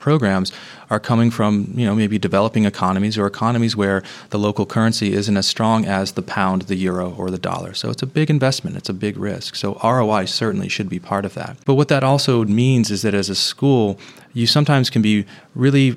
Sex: male